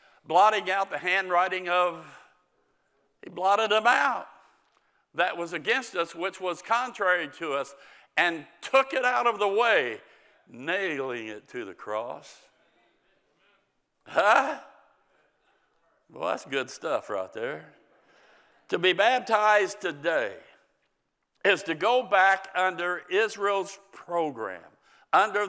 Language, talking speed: English, 115 wpm